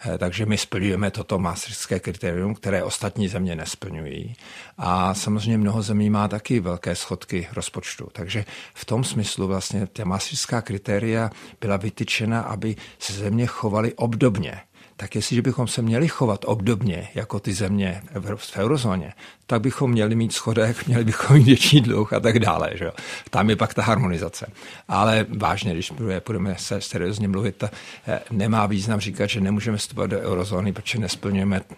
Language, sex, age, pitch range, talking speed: Czech, male, 50-69, 95-110 Hz, 155 wpm